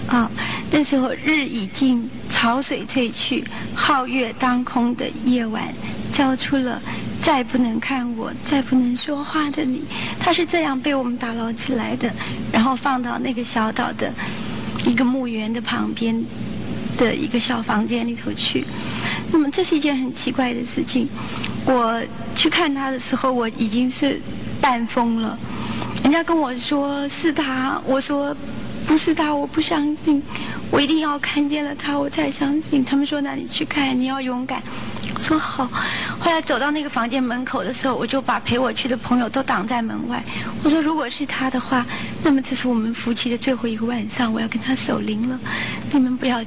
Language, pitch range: Chinese, 240-285 Hz